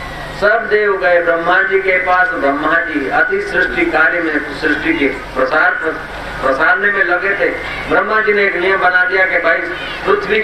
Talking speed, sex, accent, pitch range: 160 wpm, male, native, 175-235 Hz